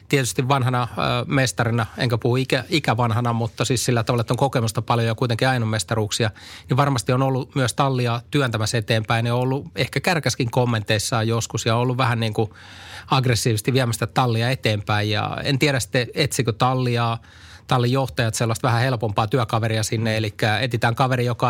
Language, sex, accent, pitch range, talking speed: Finnish, male, native, 110-130 Hz, 160 wpm